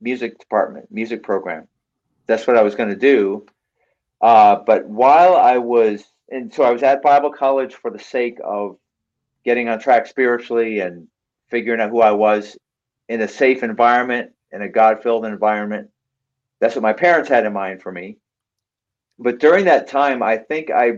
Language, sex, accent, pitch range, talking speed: English, male, American, 110-130 Hz, 175 wpm